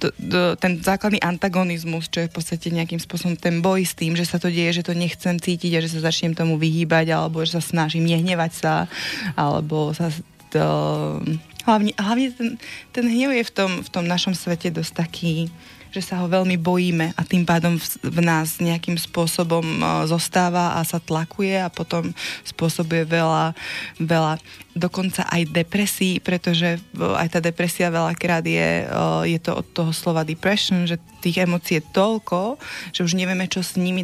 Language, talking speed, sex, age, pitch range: Slovak, 165 wpm, female, 20-39, 165-185 Hz